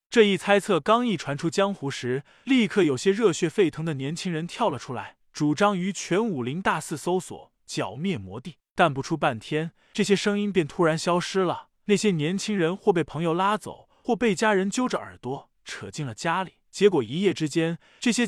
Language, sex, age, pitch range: Chinese, male, 20-39, 150-200 Hz